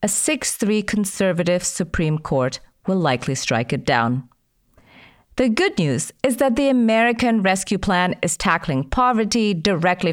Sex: female